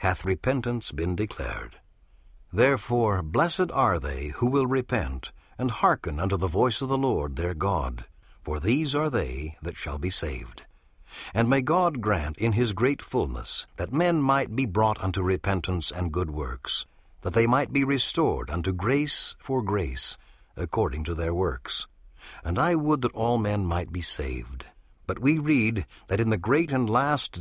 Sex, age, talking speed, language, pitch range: male, 60-79, 170 wpm, English, 80-120 Hz